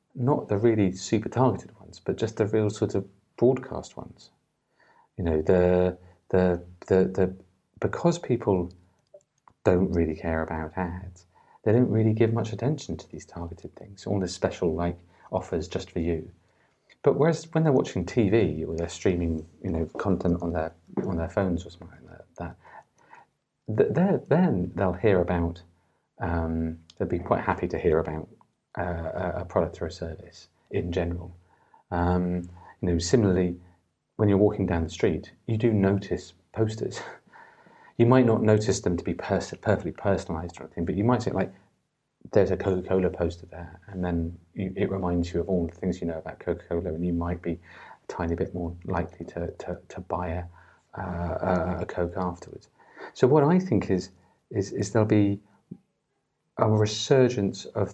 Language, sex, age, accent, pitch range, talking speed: English, male, 40-59, British, 85-100 Hz, 175 wpm